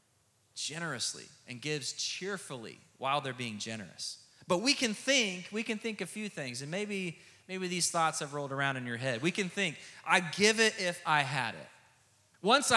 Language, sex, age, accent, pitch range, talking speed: English, male, 30-49, American, 140-215 Hz, 190 wpm